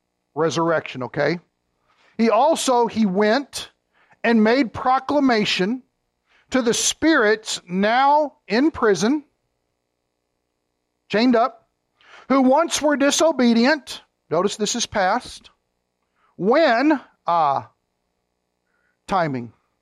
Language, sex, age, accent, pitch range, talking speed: English, male, 50-69, American, 165-245 Hz, 85 wpm